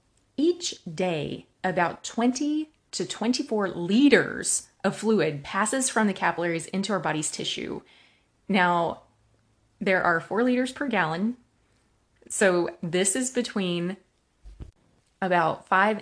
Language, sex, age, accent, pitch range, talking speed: English, female, 30-49, American, 175-235 Hz, 110 wpm